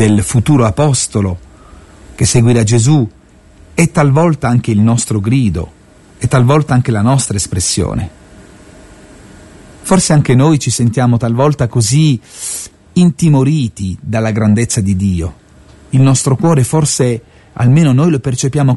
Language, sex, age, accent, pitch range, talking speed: Italian, male, 40-59, native, 105-140 Hz, 120 wpm